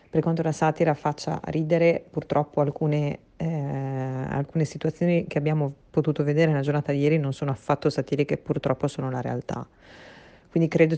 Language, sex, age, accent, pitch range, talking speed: Italian, female, 30-49, native, 140-155 Hz, 165 wpm